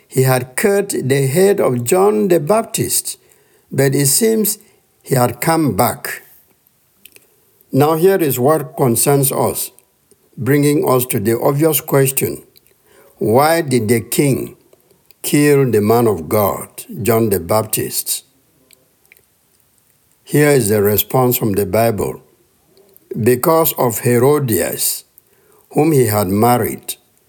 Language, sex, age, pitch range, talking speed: English, male, 60-79, 120-160 Hz, 120 wpm